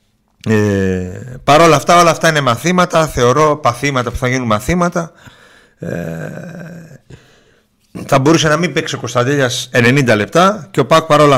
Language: Greek